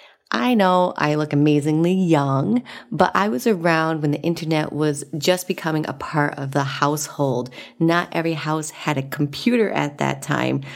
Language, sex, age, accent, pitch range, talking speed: English, female, 30-49, American, 145-180 Hz, 165 wpm